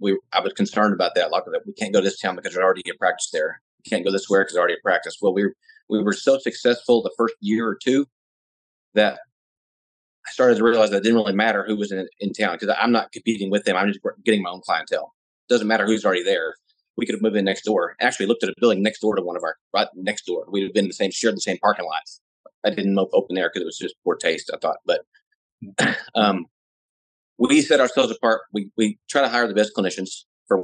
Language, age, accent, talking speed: English, 30-49, American, 275 wpm